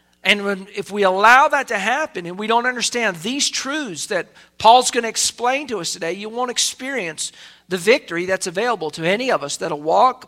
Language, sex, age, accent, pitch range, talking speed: English, male, 50-69, American, 165-210 Hz, 205 wpm